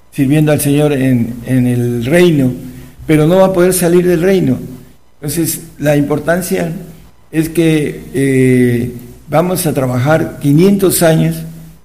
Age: 50-69